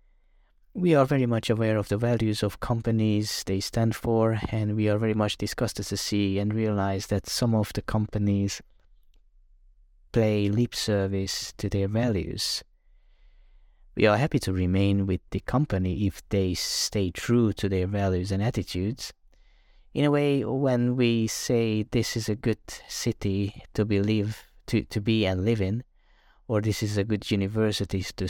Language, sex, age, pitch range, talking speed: English, male, 30-49, 95-110 Hz, 165 wpm